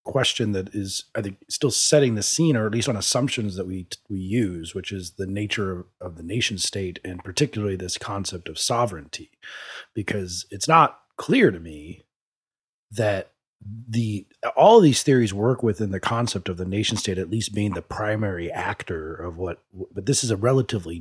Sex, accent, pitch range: male, American, 95-120 Hz